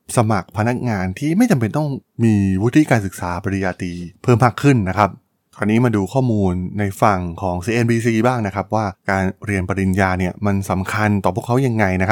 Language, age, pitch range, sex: Thai, 20-39, 95-125 Hz, male